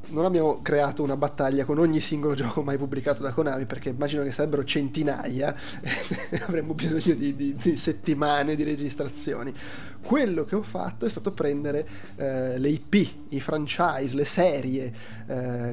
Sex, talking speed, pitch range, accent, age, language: male, 160 wpm, 140-170 Hz, native, 20-39, Italian